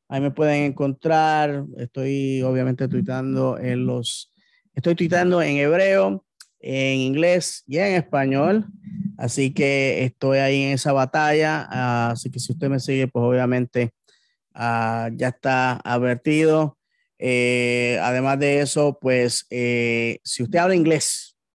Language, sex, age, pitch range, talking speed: English, male, 30-49, 125-145 Hz, 135 wpm